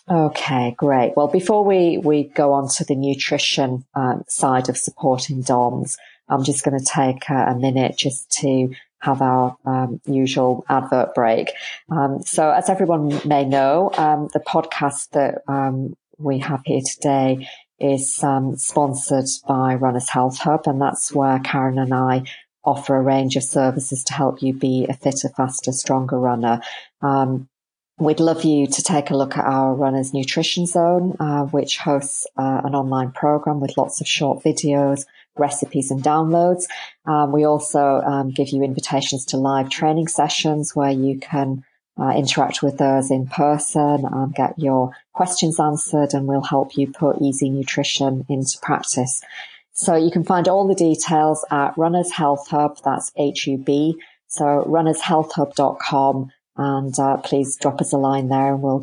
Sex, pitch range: female, 135-150 Hz